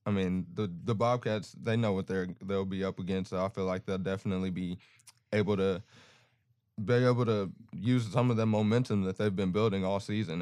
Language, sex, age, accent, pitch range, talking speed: English, male, 20-39, American, 100-115 Hz, 205 wpm